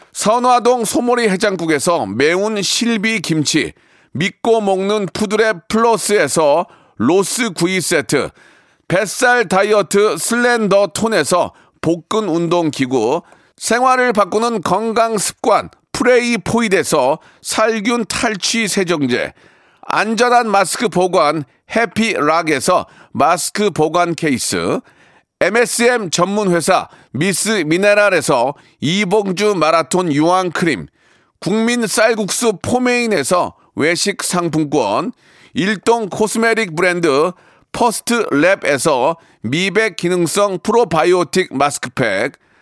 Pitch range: 180-230 Hz